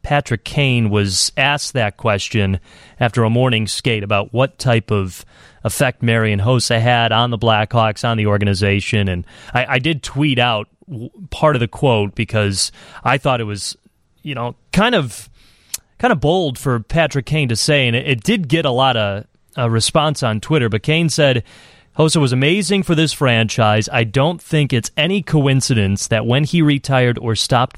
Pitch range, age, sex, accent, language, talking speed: 105-135 Hz, 30-49, male, American, English, 180 wpm